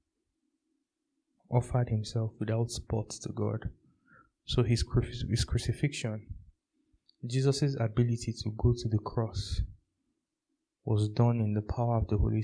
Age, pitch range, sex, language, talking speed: 20-39, 105-130 Hz, male, English, 120 wpm